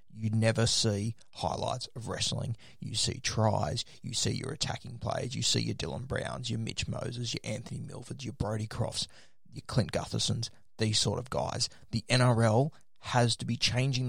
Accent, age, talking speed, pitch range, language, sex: Australian, 20-39, 175 wpm, 110-125 Hz, English, male